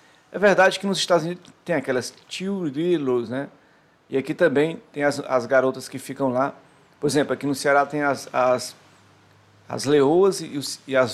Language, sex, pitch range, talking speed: Portuguese, male, 130-155 Hz, 185 wpm